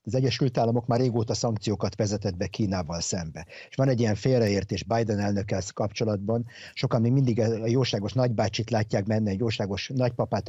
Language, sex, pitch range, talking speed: Hungarian, male, 105-125 Hz, 165 wpm